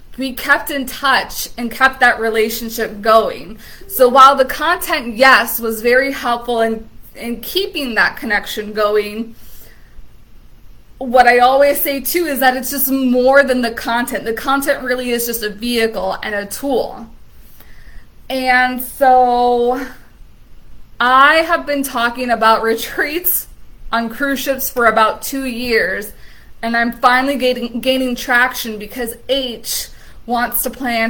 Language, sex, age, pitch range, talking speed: English, female, 20-39, 225-270 Hz, 140 wpm